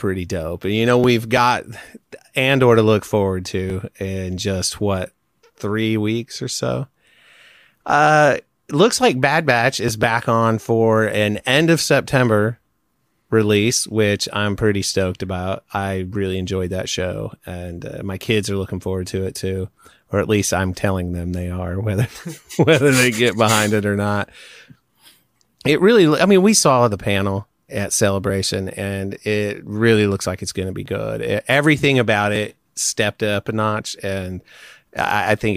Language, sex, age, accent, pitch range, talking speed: English, male, 30-49, American, 95-115 Hz, 170 wpm